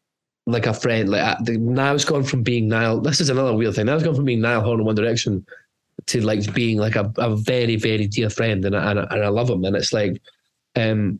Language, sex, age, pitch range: English, male, 20-39, 110-145 Hz